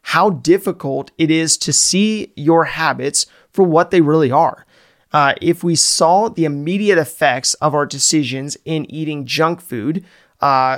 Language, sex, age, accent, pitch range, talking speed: English, male, 30-49, American, 145-175 Hz, 155 wpm